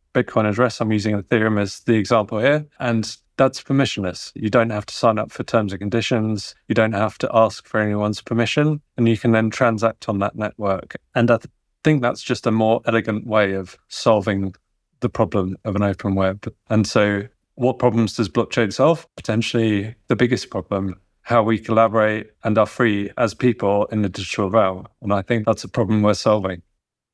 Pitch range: 105-120 Hz